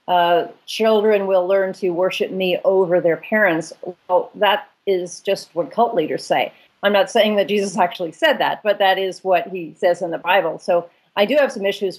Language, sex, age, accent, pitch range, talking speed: English, female, 40-59, American, 180-215 Hz, 205 wpm